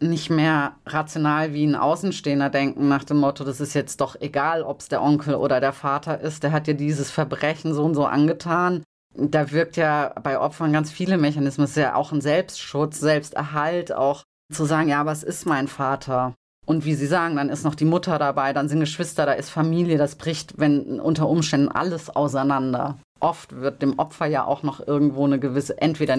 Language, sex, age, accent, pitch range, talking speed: German, female, 30-49, German, 145-165 Hz, 205 wpm